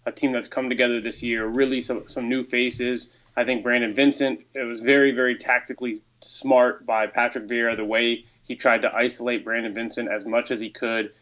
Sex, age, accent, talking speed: male, 20-39, American, 205 wpm